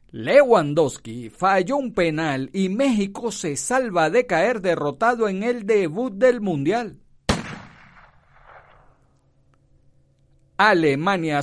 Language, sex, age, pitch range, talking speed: Spanish, male, 50-69, 150-240 Hz, 90 wpm